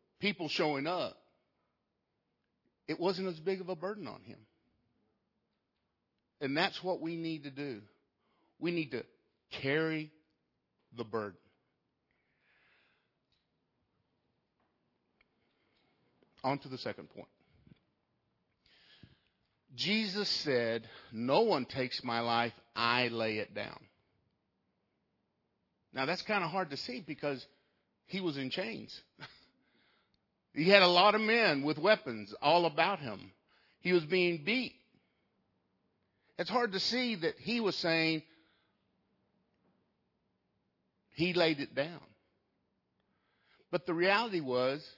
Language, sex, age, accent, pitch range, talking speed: English, male, 50-69, American, 130-185 Hz, 110 wpm